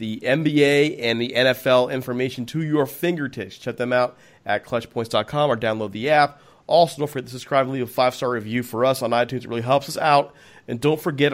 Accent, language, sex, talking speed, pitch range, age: American, English, male, 210 wpm, 115-145 Hz, 40-59